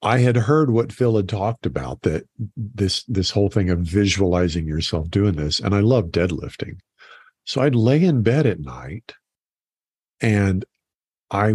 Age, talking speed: 50-69, 160 wpm